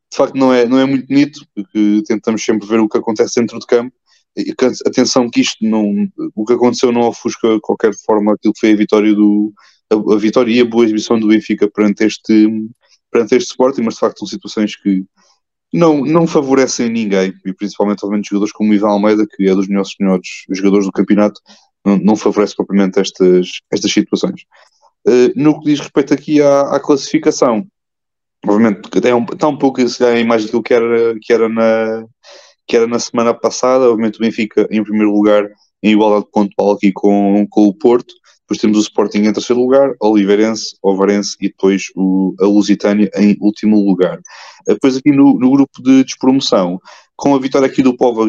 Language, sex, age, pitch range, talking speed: Portuguese, male, 20-39, 105-125 Hz, 190 wpm